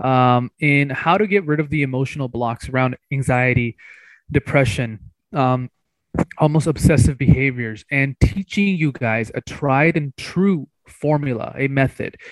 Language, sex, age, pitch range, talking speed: English, male, 20-39, 120-145 Hz, 135 wpm